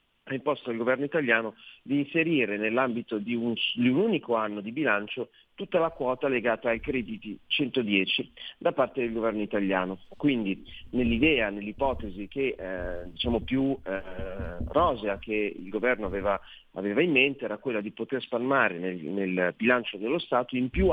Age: 40-59